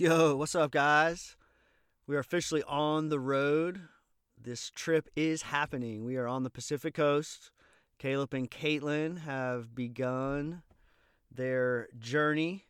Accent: American